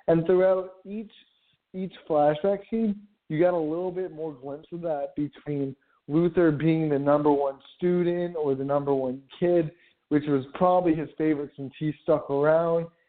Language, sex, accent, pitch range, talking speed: English, male, American, 140-185 Hz, 165 wpm